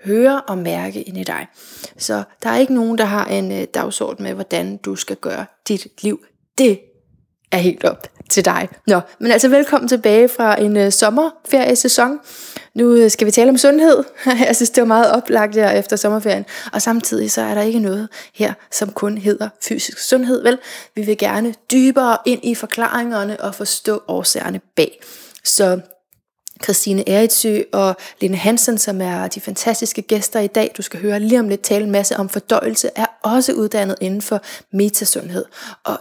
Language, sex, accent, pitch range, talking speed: Danish, female, native, 195-245 Hz, 180 wpm